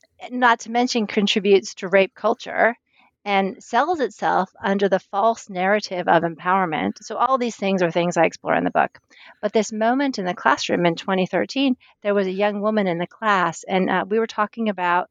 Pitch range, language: 180-220 Hz, English